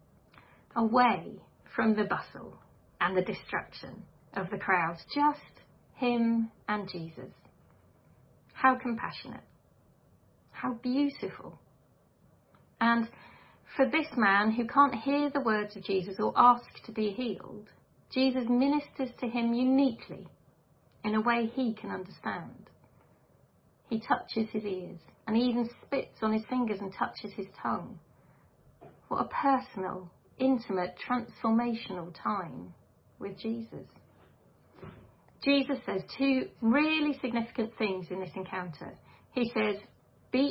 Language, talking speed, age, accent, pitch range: English, 120 wpm, 40-59, British, 200-255 Hz